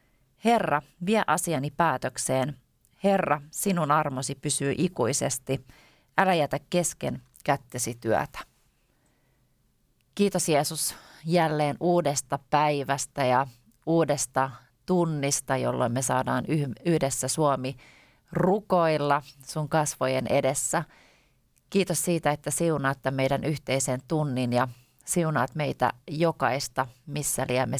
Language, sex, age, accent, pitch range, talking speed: Finnish, female, 30-49, native, 130-155 Hz, 100 wpm